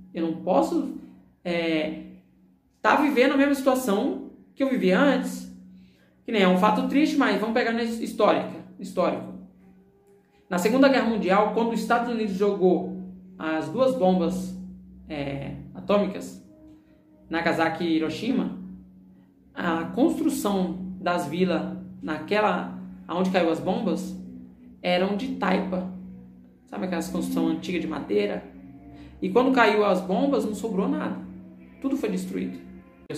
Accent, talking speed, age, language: Brazilian, 130 wpm, 20-39, Portuguese